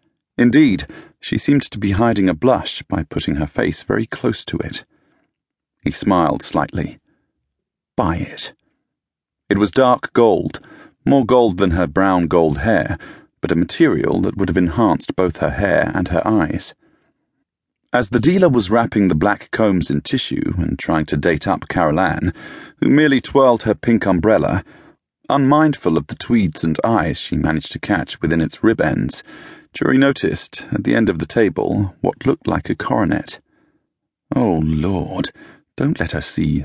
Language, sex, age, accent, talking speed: English, male, 40-59, British, 160 wpm